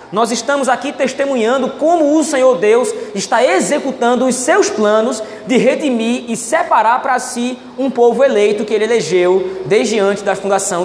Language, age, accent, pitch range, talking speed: Portuguese, 20-39, Brazilian, 220-275 Hz, 160 wpm